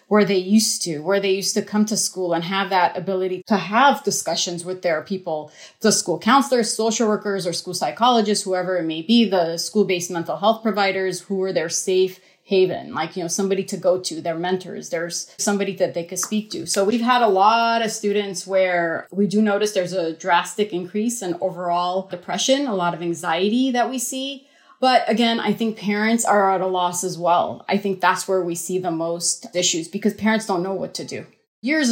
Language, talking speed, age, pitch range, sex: English, 210 wpm, 30-49, 175-210 Hz, female